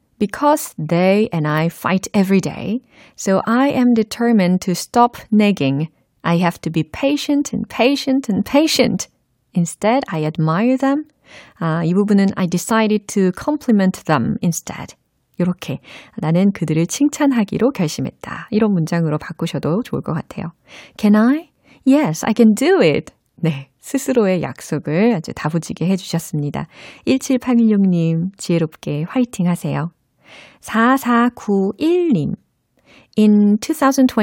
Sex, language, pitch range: female, Korean, 165-240 Hz